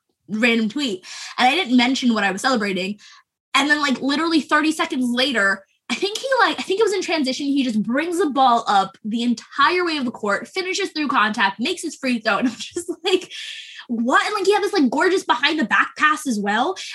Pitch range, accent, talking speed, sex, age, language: 235-345 Hz, American, 225 wpm, female, 10-29, English